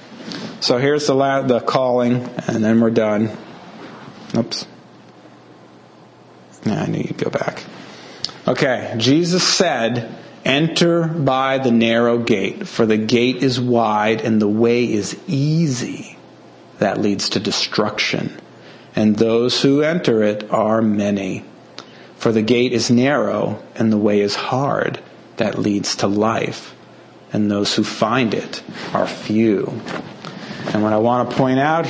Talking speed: 140 wpm